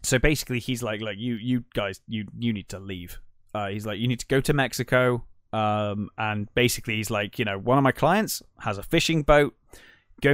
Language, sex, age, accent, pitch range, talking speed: English, male, 20-39, British, 100-120 Hz, 220 wpm